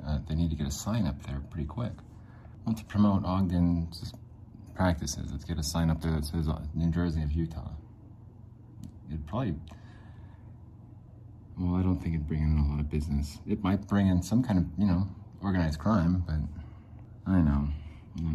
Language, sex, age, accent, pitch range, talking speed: English, male, 30-49, American, 80-110 Hz, 195 wpm